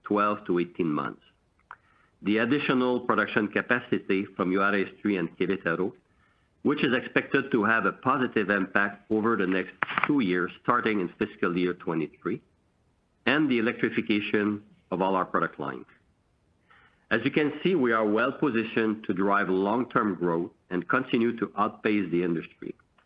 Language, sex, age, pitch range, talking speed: English, male, 50-69, 95-115 Hz, 145 wpm